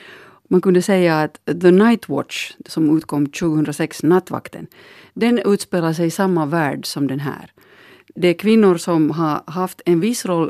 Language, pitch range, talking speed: Finnish, 150-190 Hz, 165 wpm